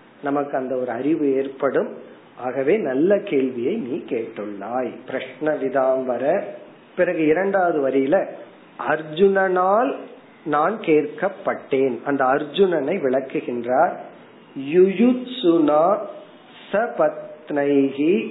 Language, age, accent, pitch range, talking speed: Tamil, 40-59, native, 135-190 Hz, 80 wpm